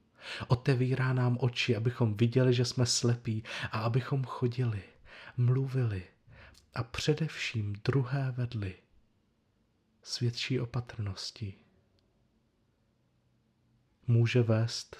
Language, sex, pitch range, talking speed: Czech, male, 105-120 Hz, 80 wpm